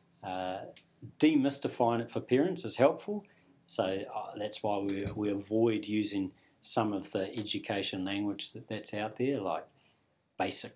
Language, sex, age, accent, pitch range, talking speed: English, male, 40-59, Australian, 95-120 Hz, 145 wpm